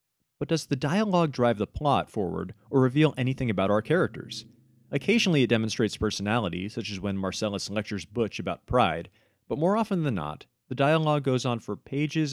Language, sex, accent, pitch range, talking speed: English, male, American, 100-130 Hz, 180 wpm